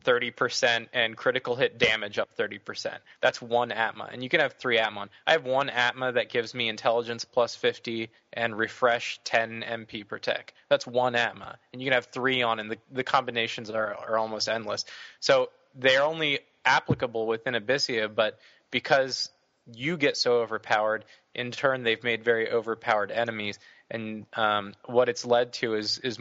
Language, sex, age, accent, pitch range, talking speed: English, male, 20-39, American, 110-120 Hz, 175 wpm